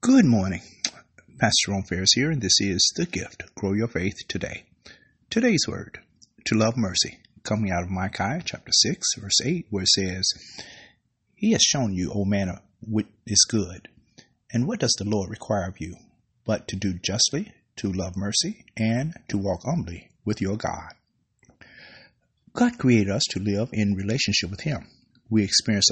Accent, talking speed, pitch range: American, 170 wpm, 100-120 Hz